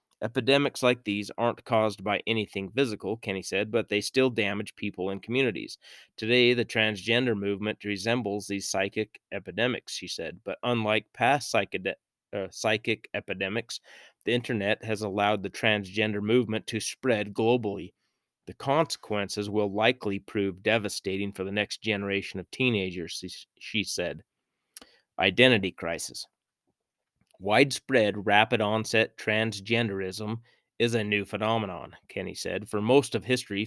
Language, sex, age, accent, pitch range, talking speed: English, male, 30-49, American, 100-120 Hz, 130 wpm